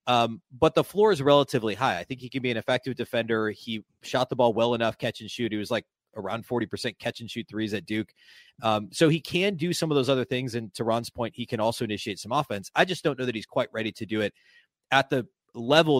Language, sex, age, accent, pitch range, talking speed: English, male, 30-49, American, 110-135 Hz, 260 wpm